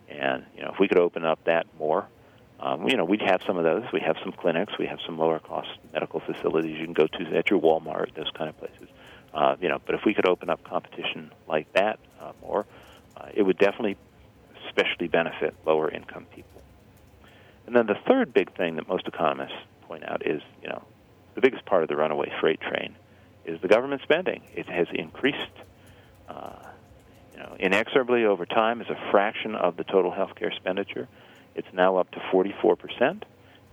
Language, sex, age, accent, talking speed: English, male, 40-59, American, 190 wpm